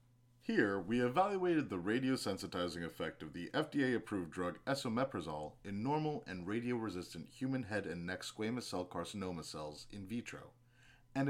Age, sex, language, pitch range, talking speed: 30-49, male, English, 105-130 Hz, 145 wpm